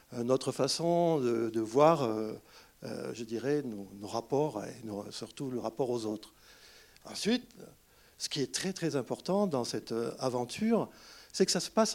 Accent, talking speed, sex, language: French, 155 wpm, male, French